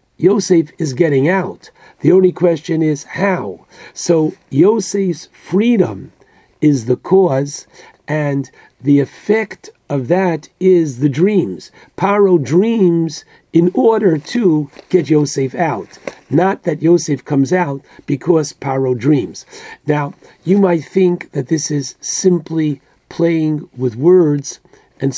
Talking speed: 120 wpm